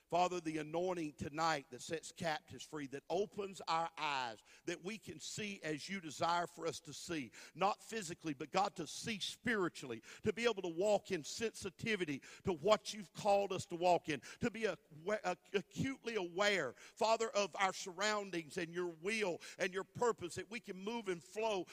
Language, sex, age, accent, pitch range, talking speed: English, male, 50-69, American, 180-230 Hz, 180 wpm